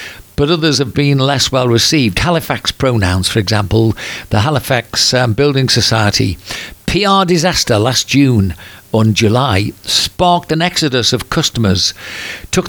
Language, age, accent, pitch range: English, 50-69, British, 125-165 Hz